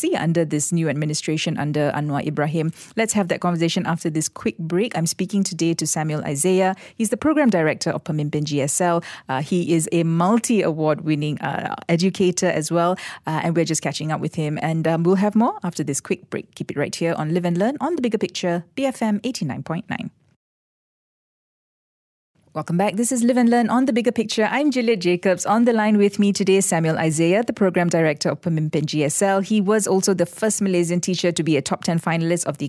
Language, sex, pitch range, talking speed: English, female, 155-210 Hz, 205 wpm